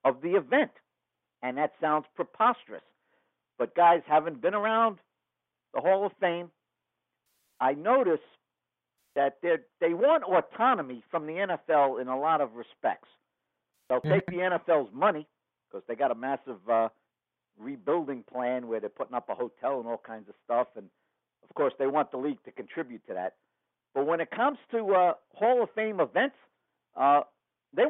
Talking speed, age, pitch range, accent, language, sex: 170 wpm, 60-79, 125-180 Hz, American, English, male